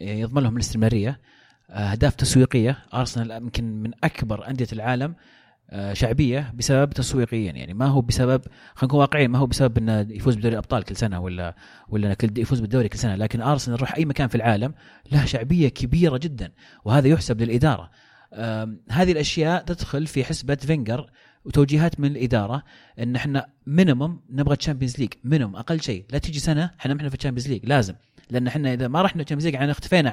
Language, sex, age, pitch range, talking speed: Arabic, male, 30-49, 115-155 Hz, 165 wpm